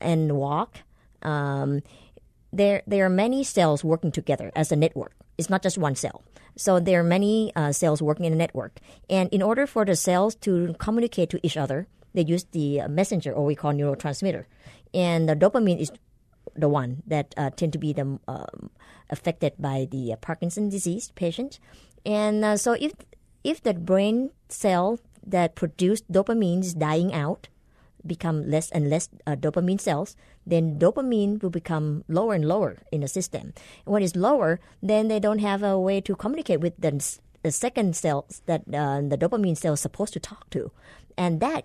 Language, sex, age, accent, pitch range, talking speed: English, male, 50-69, American, 150-190 Hz, 180 wpm